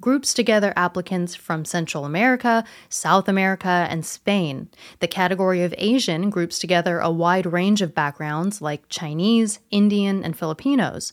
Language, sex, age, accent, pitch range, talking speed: English, female, 20-39, American, 175-230 Hz, 140 wpm